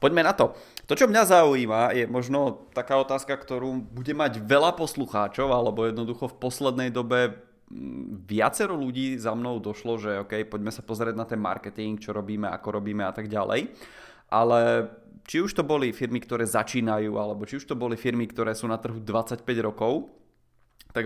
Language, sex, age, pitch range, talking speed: Czech, male, 30-49, 110-130 Hz, 175 wpm